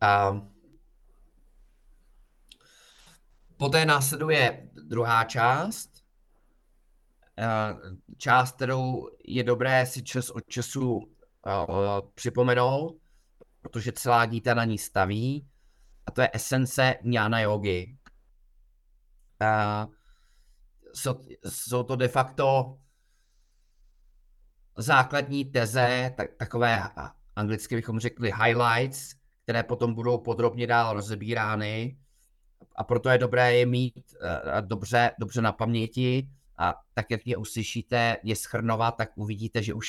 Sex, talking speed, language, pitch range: male, 95 wpm, Czech, 110-125 Hz